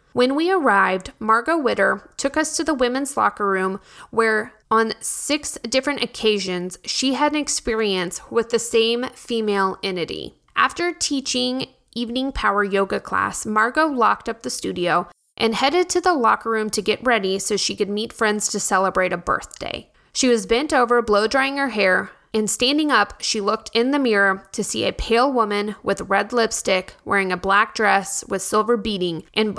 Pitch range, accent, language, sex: 200-250 Hz, American, English, female